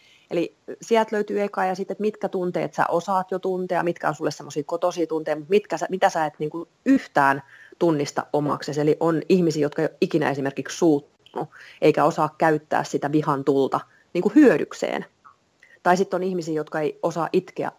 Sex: female